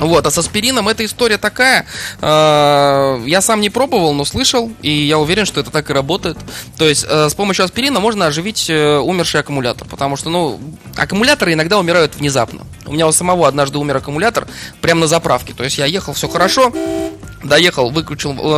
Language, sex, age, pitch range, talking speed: Russian, male, 20-39, 140-185 Hz, 180 wpm